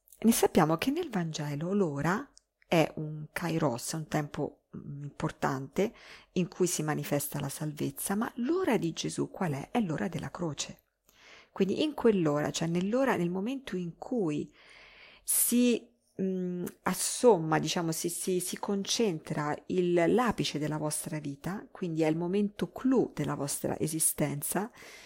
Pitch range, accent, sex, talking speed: 150-190 Hz, native, female, 140 wpm